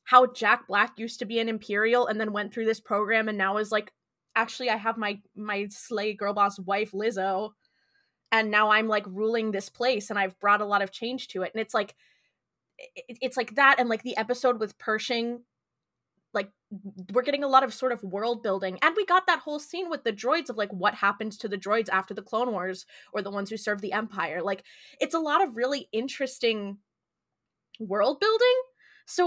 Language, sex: English, female